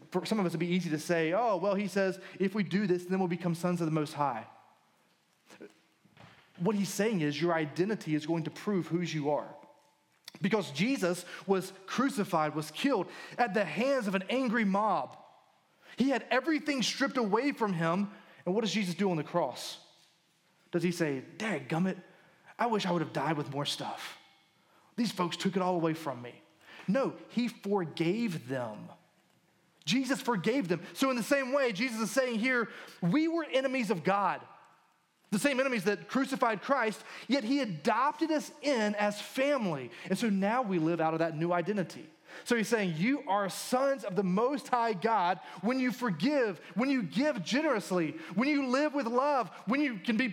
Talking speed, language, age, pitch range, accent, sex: 190 wpm, English, 30-49, 175-255 Hz, American, male